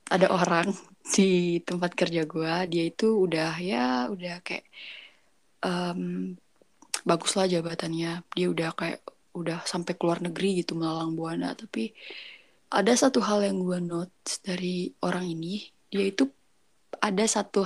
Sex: female